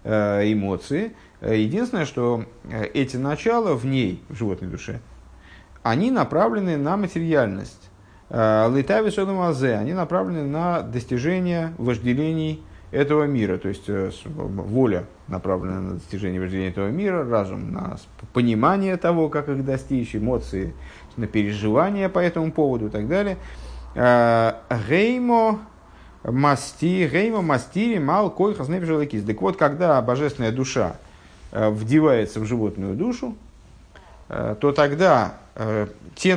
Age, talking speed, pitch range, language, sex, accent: 50-69, 100 wpm, 105-165 Hz, Russian, male, native